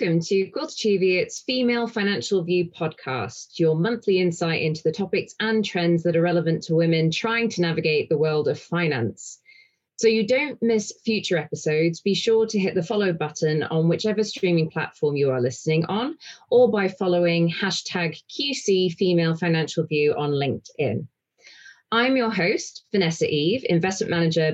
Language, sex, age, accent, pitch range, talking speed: English, female, 20-39, British, 160-215 Hz, 160 wpm